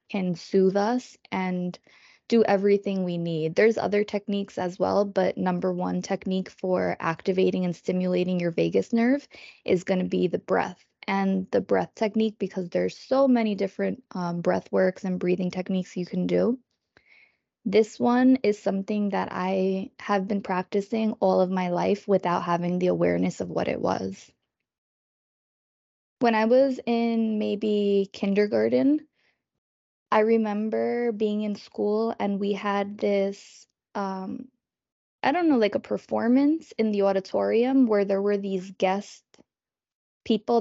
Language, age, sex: English, 20-39, female